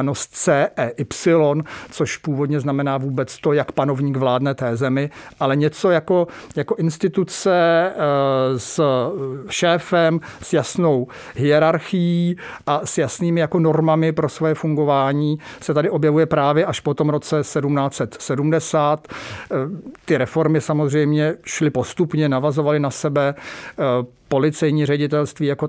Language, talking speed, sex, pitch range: English, 115 wpm, male, 135-160 Hz